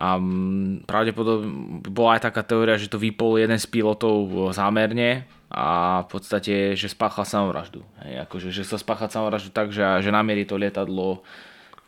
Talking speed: 155 wpm